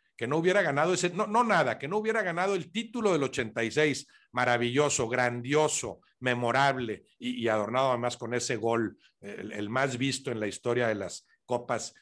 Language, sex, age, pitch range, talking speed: Spanish, male, 60-79, 130-175 Hz, 180 wpm